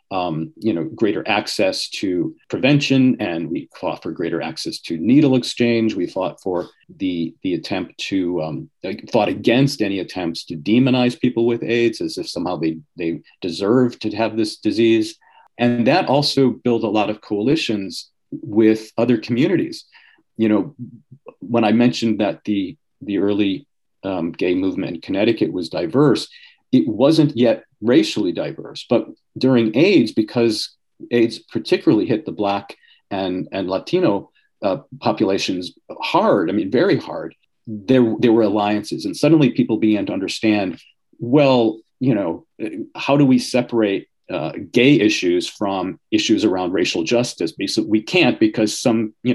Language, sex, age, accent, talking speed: English, male, 40-59, American, 150 wpm